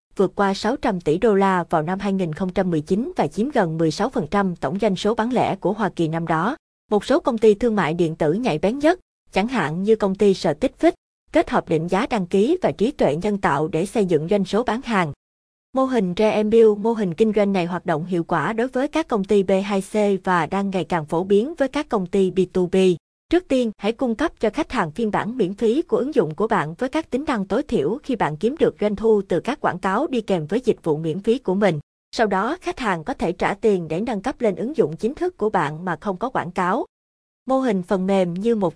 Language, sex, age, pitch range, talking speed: Vietnamese, female, 20-39, 180-230 Hz, 245 wpm